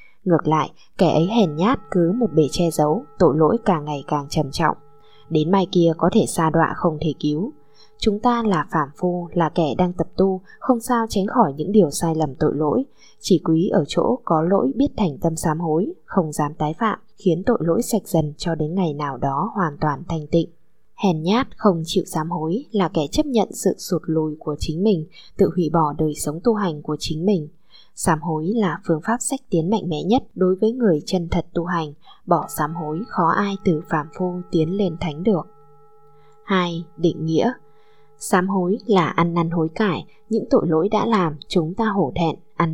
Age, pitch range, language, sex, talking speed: 20-39, 155-210 Hz, Vietnamese, female, 215 wpm